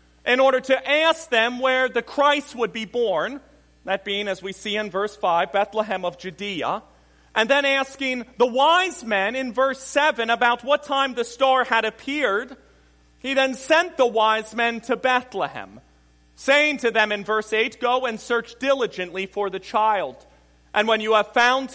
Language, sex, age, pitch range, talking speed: English, male, 40-59, 190-260 Hz, 175 wpm